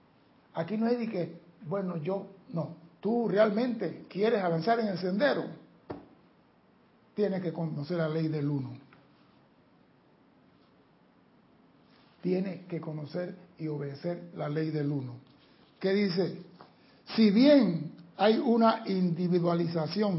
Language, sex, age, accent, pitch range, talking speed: Spanish, male, 60-79, American, 165-205 Hz, 115 wpm